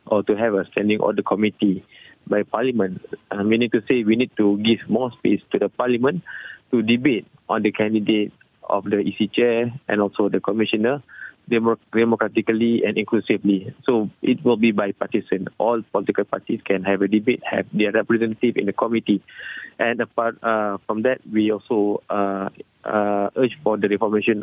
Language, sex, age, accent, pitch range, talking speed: English, male, 20-39, Malaysian, 100-115 Hz, 175 wpm